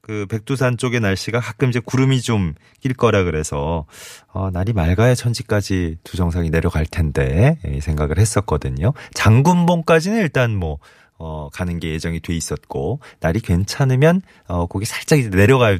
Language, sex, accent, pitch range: Korean, male, native, 80-125 Hz